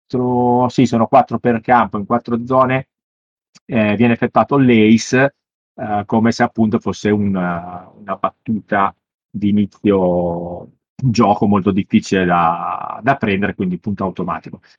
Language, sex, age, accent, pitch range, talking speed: Italian, male, 30-49, native, 105-130 Hz, 130 wpm